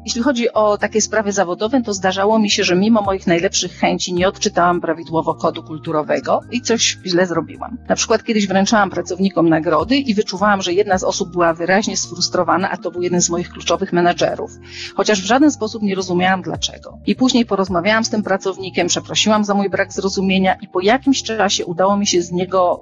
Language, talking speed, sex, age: Polish, 195 wpm, female, 40-59